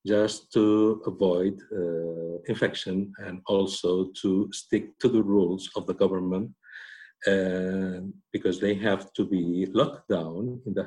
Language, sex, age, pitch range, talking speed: Danish, male, 50-69, 100-130 Hz, 140 wpm